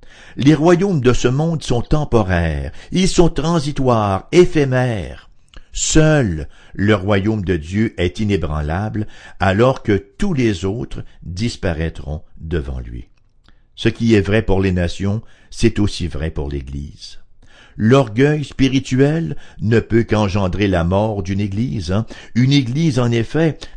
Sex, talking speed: male, 130 wpm